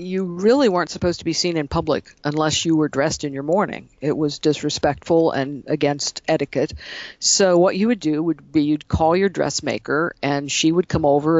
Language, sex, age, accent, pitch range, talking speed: English, female, 50-69, American, 145-180 Hz, 200 wpm